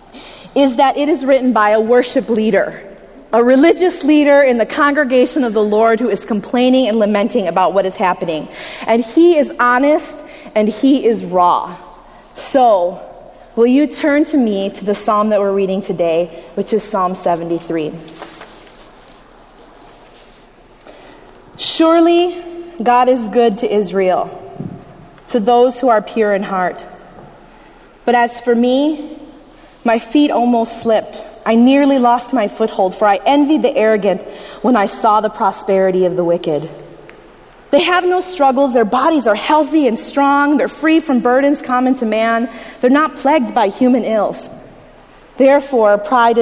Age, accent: 30-49, American